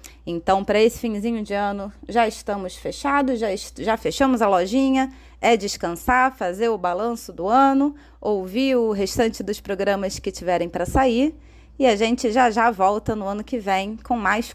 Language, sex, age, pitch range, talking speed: Portuguese, female, 20-39, 205-255 Hz, 175 wpm